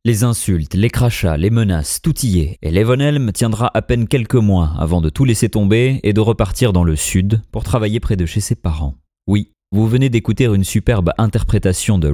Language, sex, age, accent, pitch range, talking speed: French, male, 30-49, French, 85-120 Hz, 210 wpm